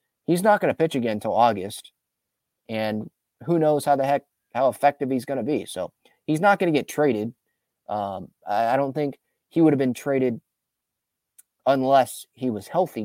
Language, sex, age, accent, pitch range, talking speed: English, male, 20-39, American, 115-150 Hz, 190 wpm